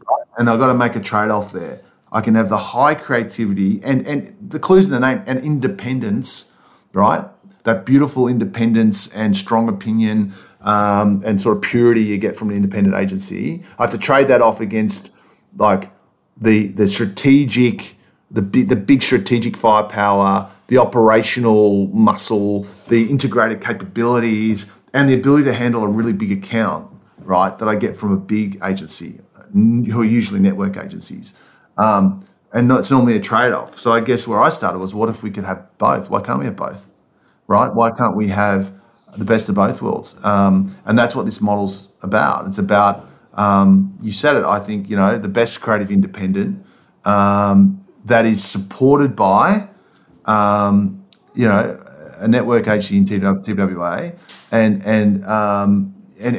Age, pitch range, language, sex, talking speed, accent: 40-59, 100-125 Hz, English, male, 170 wpm, Australian